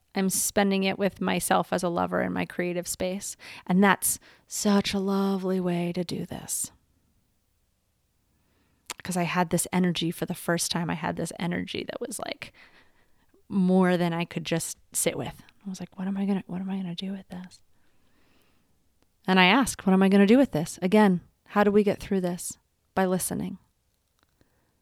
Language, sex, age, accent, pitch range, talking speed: English, female, 30-49, American, 175-195 Hz, 180 wpm